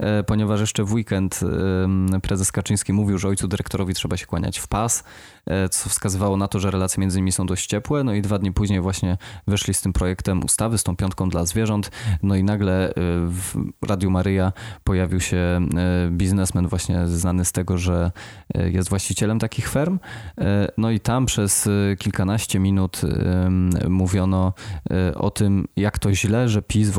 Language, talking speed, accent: Polish, 165 wpm, native